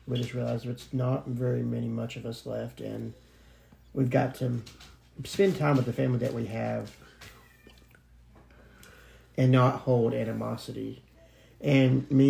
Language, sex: English, male